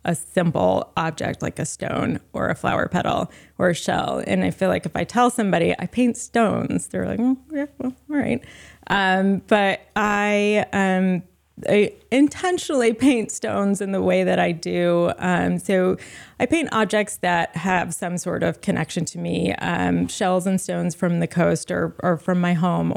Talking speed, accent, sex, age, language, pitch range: 185 wpm, American, female, 20-39, English, 170-205 Hz